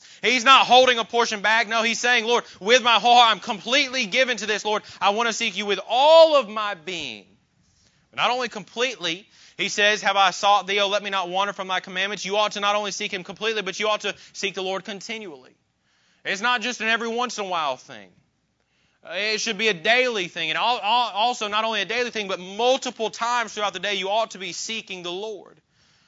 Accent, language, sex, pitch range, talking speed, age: American, English, male, 130-215 Hz, 230 wpm, 30-49